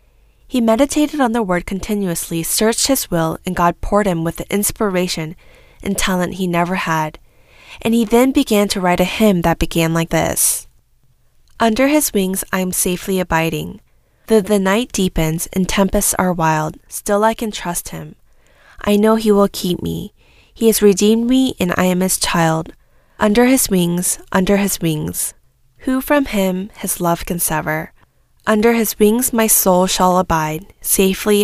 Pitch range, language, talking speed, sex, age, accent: 170-220 Hz, English, 170 wpm, female, 10-29, American